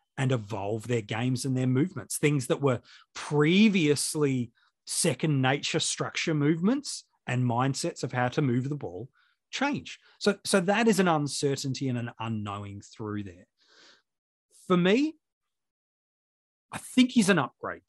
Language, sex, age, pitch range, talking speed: English, male, 30-49, 130-180 Hz, 140 wpm